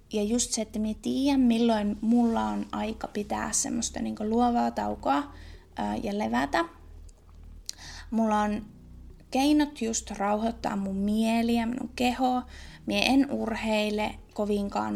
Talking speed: 130 wpm